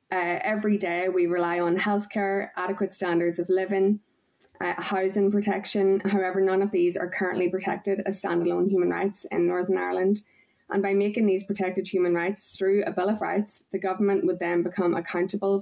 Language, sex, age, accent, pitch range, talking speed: English, female, 20-39, Irish, 180-200 Hz, 175 wpm